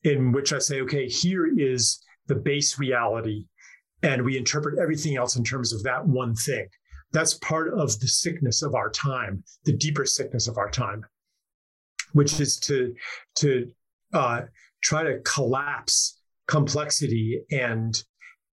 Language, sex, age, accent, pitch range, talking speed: English, male, 40-59, American, 120-150 Hz, 145 wpm